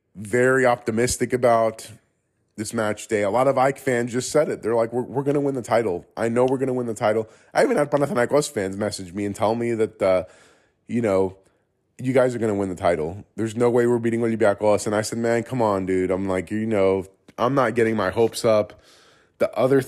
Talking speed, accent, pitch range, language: 235 wpm, American, 100-125 Hz, English